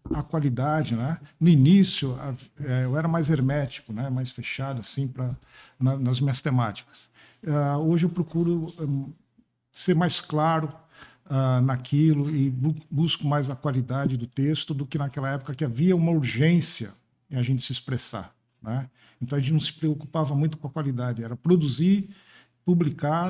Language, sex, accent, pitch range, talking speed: Portuguese, male, Brazilian, 130-160 Hz, 150 wpm